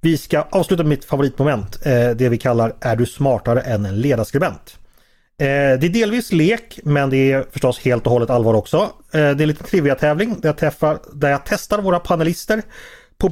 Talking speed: 195 wpm